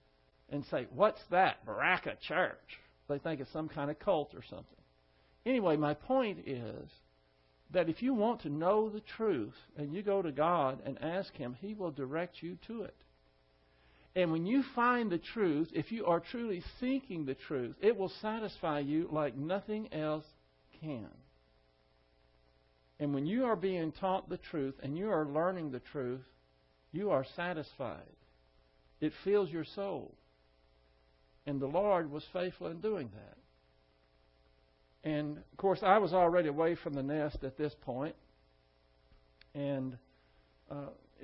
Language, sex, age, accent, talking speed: English, male, 60-79, American, 155 wpm